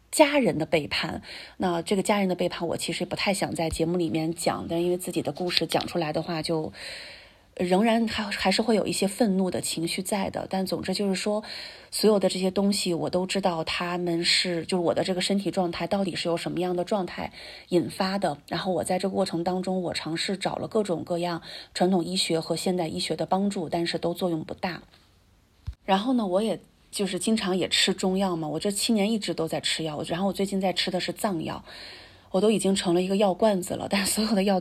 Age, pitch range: 30-49, 170-195 Hz